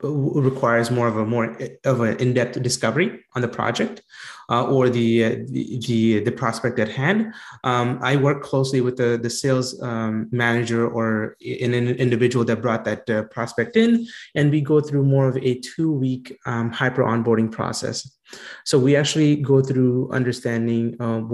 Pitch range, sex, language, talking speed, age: 115-130 Hz, male, English, 165 wpm, 20-39